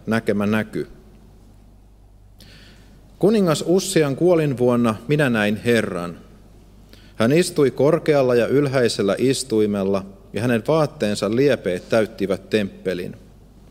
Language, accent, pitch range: Finnish, native, 100-140 Hz